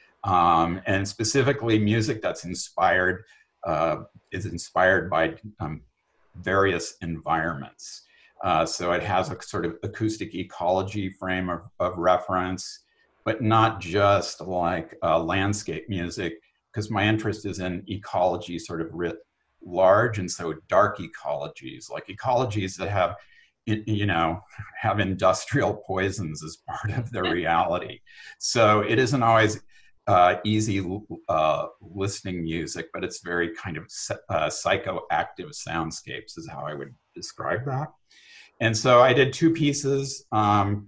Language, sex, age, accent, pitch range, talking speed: English, male, 50-69, American, 90-110 Hz, 135 wpm